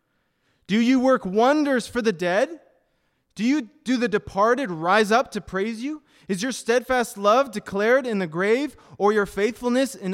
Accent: American